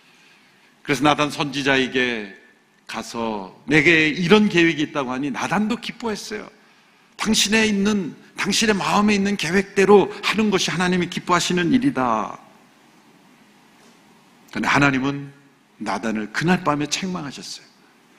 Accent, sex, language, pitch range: native, male, Korean, 180-220 Hz